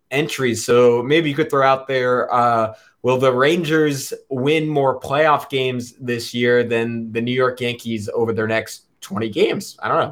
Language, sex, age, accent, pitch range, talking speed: English, male, 20-39, American, 120-160 Hz, 185 wpm